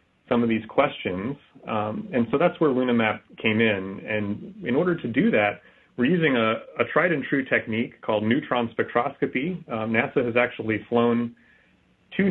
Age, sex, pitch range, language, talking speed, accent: 30-49, male, 110-125 Hz, English, 160 wpm, American